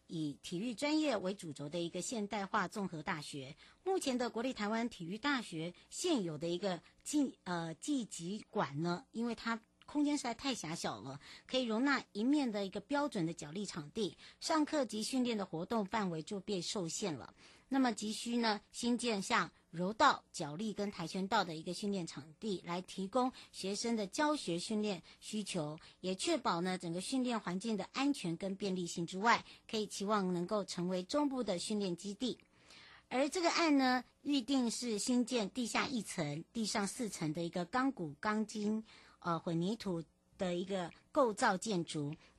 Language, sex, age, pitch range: Chinese, male, 50-69, 180-245 Hz